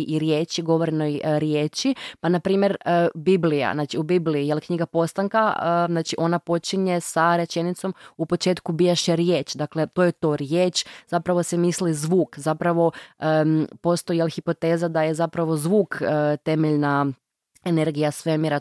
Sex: female